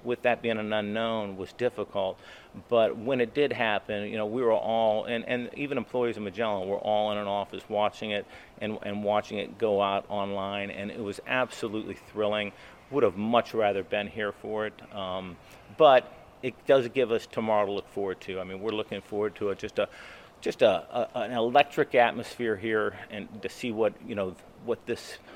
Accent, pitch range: American, 105-120 Hz